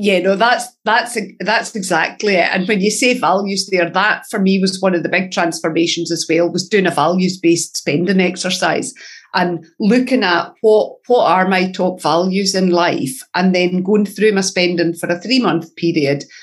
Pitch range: 175-220 Hz